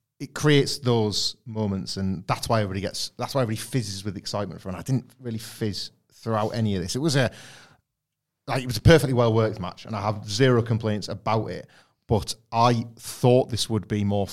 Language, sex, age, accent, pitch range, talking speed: English, male, 30-49, British, 95-120 Hz, 205 wpm